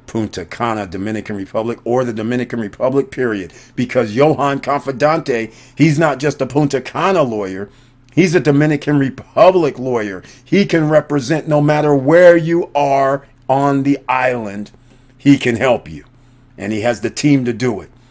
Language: English